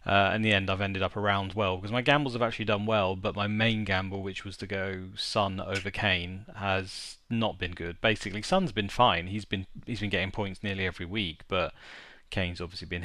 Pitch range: 95-105 Hz